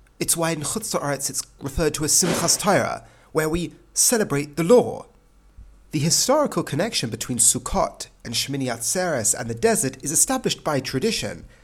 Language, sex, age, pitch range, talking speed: English, male, 40-59, 115-180 Hz, 155 wpm